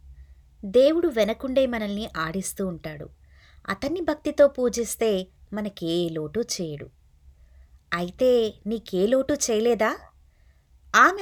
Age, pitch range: 20-39, 170-250 Hz